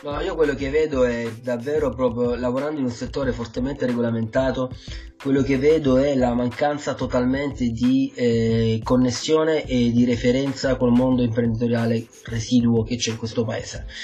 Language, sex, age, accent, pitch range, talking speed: Italian, male, 30-49, native, 115-130 Hz, 155 wpm